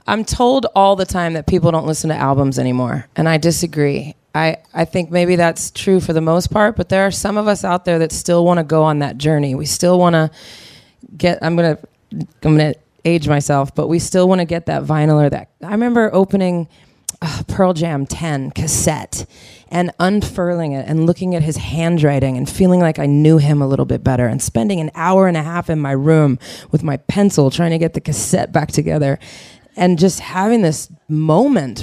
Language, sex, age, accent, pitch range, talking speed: English, female, 20-39, American, 150-185 Hz, 205 wpm